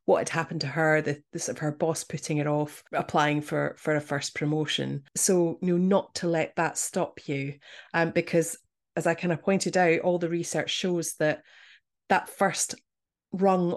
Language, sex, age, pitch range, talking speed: English, female, 30-49, 150-175 Hz, 185 wpm